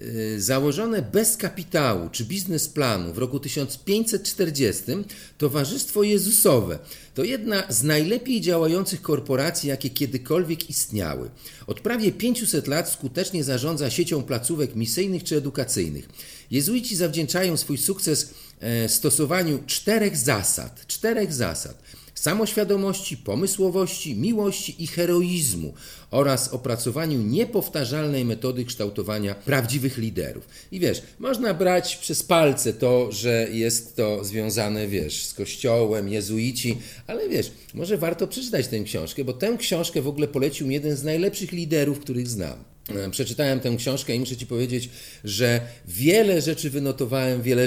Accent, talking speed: native, 125 wpm